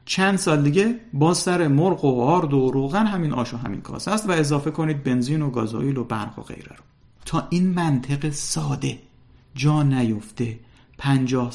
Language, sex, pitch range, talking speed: Persian, male, 120-150 Hz, 175 wpm